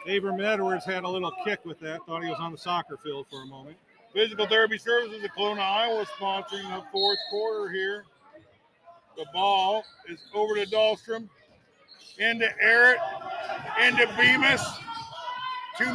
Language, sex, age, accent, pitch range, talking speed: English, male, 50-69, American, 220-315 Hz, 150 wpm